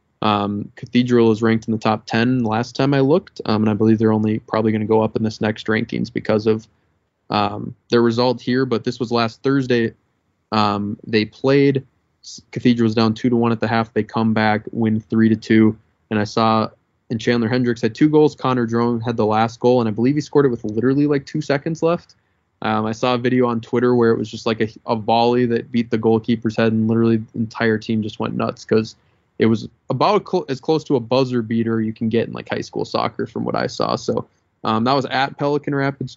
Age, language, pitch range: 20-39, English, 110-120 Hz